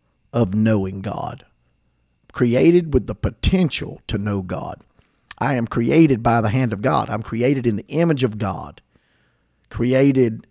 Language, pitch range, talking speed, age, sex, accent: English, 105-145 Hz, 150 wpm, 50-69, male, American